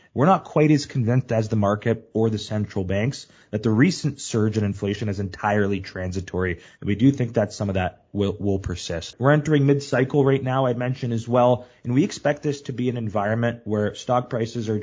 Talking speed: 215 wpm